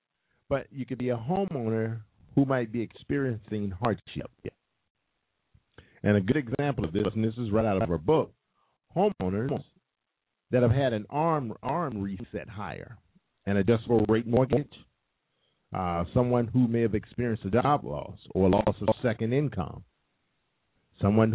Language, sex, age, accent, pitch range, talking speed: English, male, 50-69, American, 100-130 Hz, 150 wpm